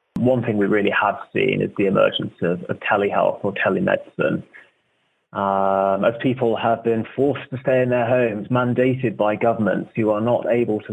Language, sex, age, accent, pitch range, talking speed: English, male, 20-39, British, 105-120 Hz, 180 wpm